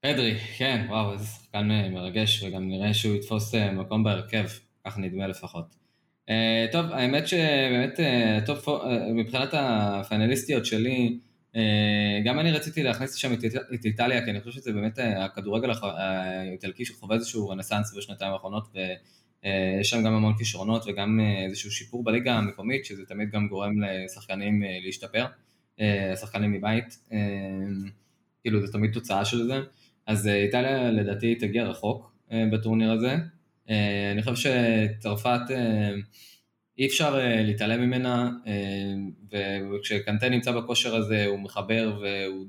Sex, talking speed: male, 125 wpm